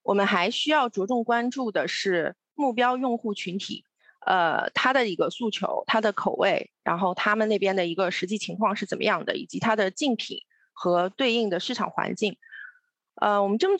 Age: 30-49